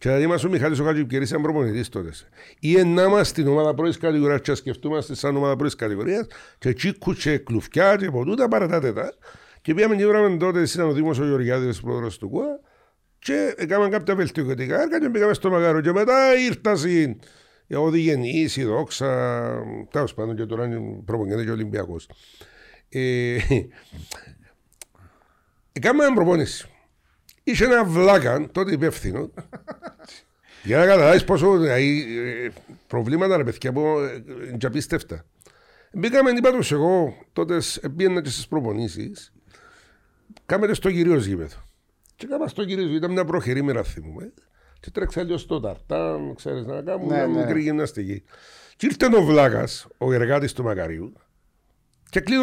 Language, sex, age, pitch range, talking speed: Greek, male, 60-79, 120-185 Hz, 95 wpm